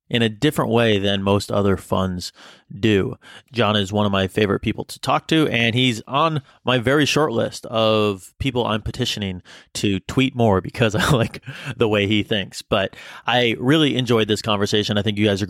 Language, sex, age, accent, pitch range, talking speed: English, male, 30-49, American, 100-120 Hz, 200 wpm